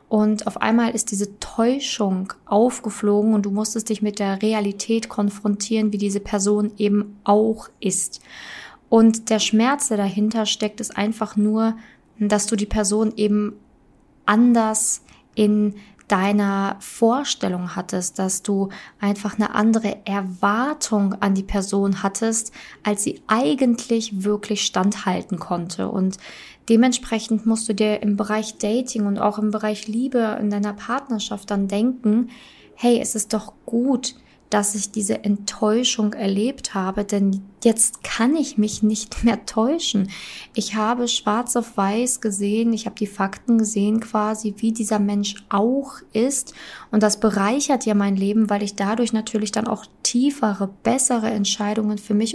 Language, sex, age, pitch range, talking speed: German, female, 20-39, 205-225 Hz, 145 wpm